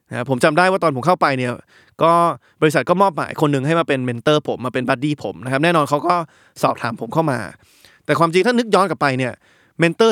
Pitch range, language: 135-175 Hz, Thai